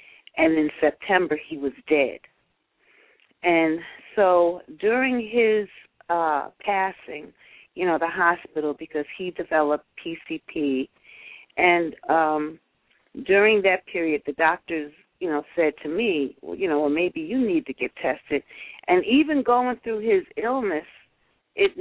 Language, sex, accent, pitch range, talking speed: English, female, American, 160-230 Hz, 135 wpm